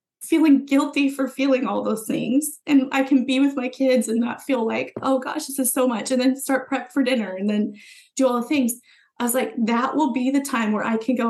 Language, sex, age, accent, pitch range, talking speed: English, female, 20-39, American, 215-265 Hz, 255 wpm